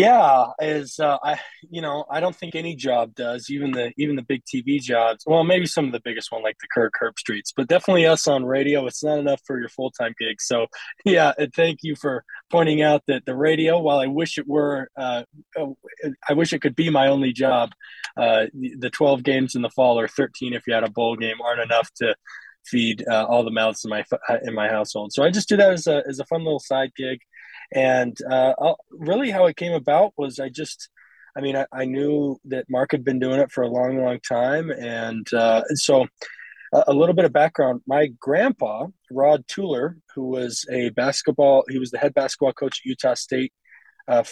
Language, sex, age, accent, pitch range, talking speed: English, male, 20-39, American, 125-150 Hz, 220 wpm